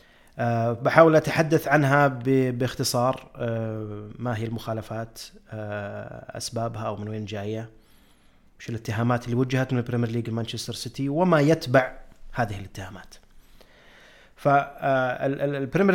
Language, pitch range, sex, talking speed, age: Arabic, 115-135 Hz, male, 100 wpm, 30-49